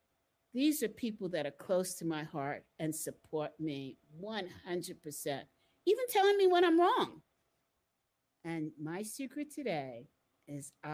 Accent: American